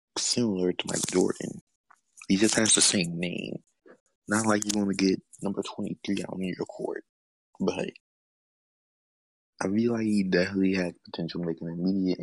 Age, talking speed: 20-39, 165 wpm